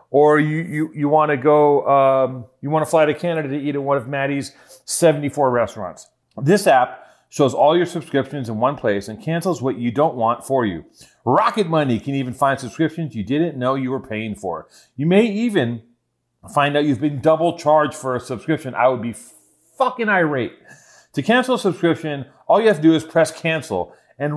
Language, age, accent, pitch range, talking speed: English, 40-59, American, 130-170 Hz, 200 wpm